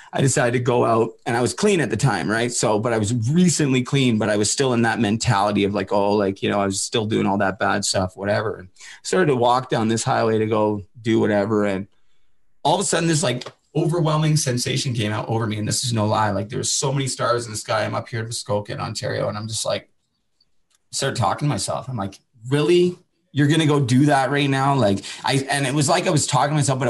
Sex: male